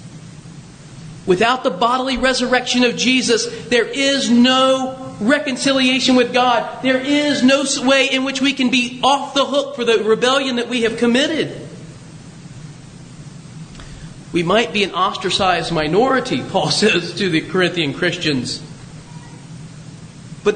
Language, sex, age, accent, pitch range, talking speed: English, male, 40-59, American, 160-275 Hz, 130 wpm